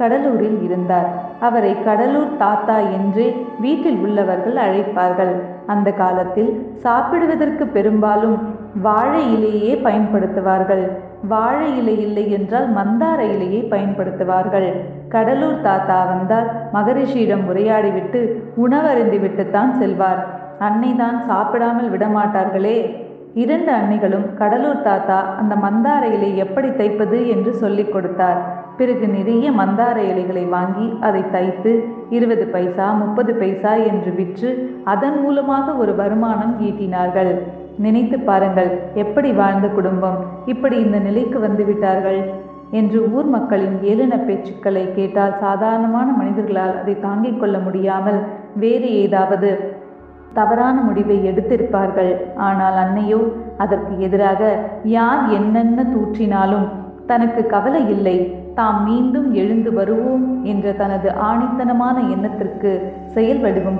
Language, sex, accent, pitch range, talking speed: Tamil, female, native, 195-235 Hz, 90 wpm